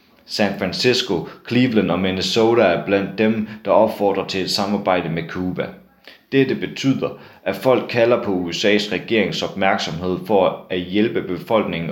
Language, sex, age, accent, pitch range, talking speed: Danish, male, 30-49, native, 95-110 Hz, 140 wpm